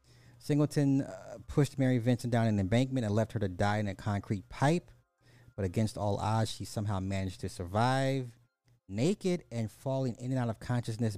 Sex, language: male, English